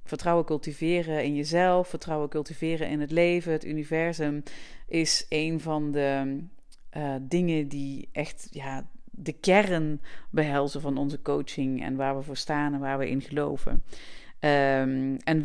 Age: 40-59